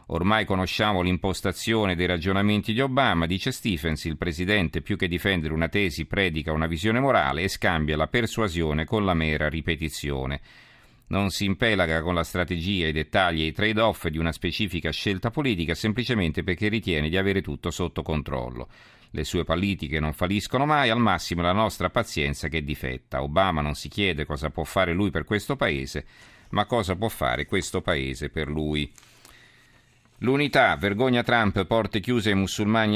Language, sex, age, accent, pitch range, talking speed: Italian, male, 50-69, native, 80-110 Hz, 170 wpm